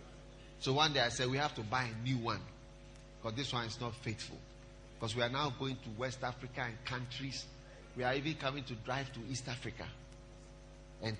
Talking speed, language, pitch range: 205 wpm, English, 125-175 Hz